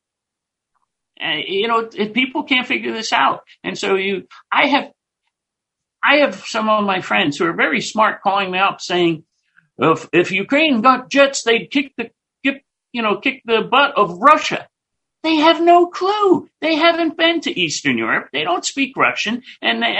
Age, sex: 60-79, male